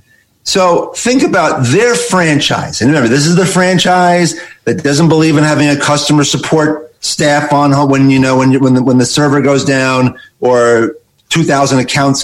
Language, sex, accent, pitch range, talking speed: English, male, American, 135-180 Hz, 180 wpm